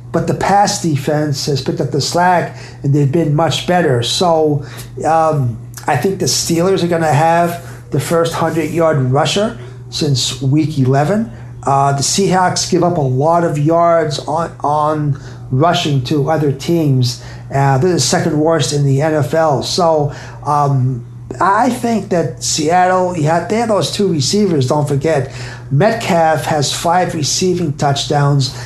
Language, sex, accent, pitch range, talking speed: English, male, American, 130-165 Hz, 150 wpm